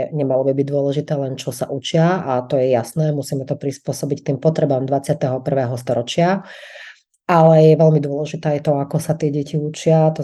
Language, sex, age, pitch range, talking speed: Slovak, female, 30-49, 140-160 Hz, 180 wpm